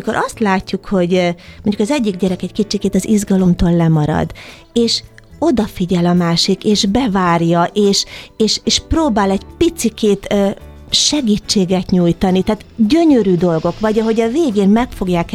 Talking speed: 135 wpm